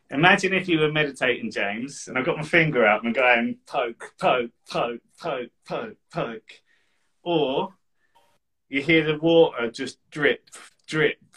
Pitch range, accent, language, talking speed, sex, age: 125-165 Hz, British, English, 155 wpm, male, 30-49